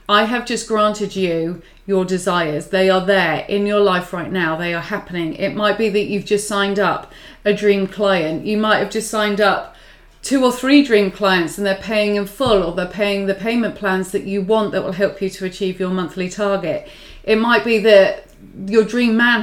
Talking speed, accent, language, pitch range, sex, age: 215 wpm, British, English, 195-230 Hz, female, 30-49